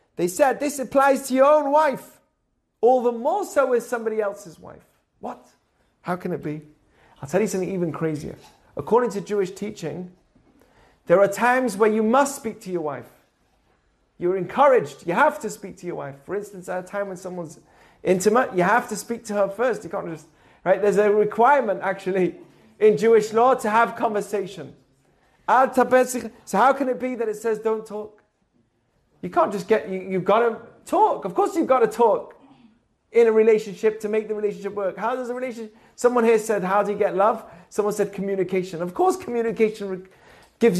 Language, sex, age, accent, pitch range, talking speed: English, male, 30-49, British, 190-245 Hz, 190 wpm